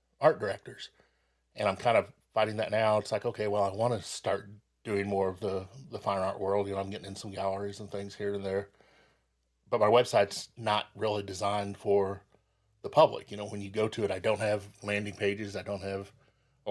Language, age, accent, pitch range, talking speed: English, 30-49, American, 100-110 Hz, 225 wpm